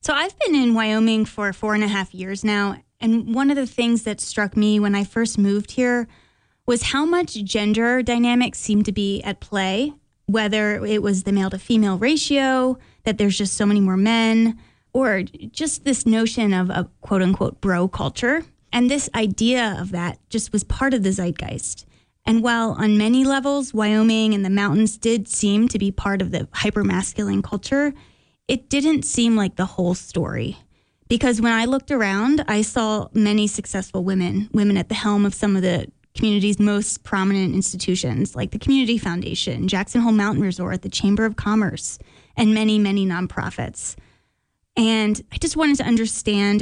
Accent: American